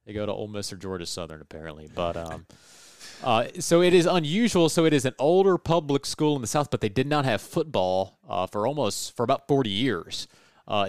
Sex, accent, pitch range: male, American, 95-120 Hz